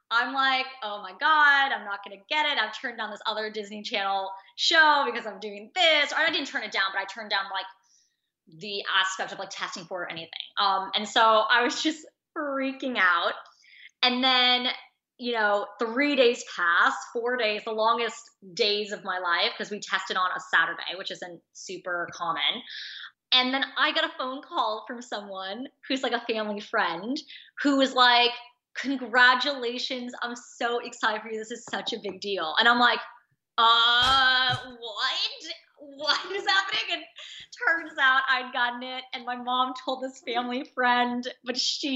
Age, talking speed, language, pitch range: 20-39, 180 wpm, English, 210-265 Hz